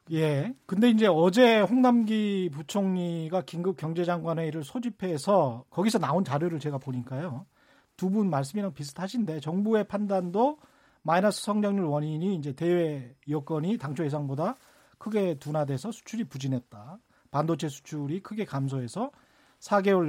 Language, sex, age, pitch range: Korean, male, 40-59, 155-210 Hz